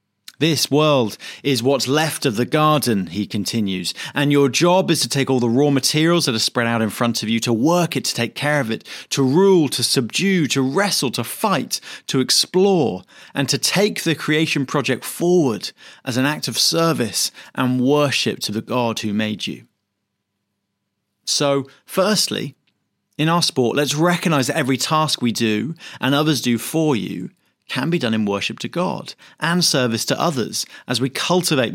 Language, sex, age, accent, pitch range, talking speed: English, male, 30-49, British, 115-155 Hz, 185 wpm